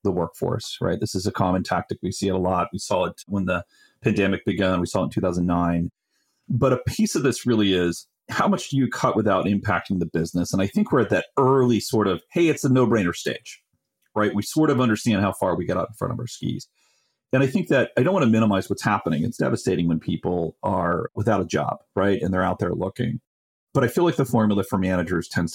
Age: 40-59